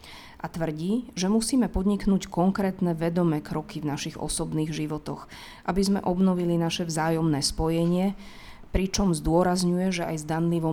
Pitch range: 155-175 Hz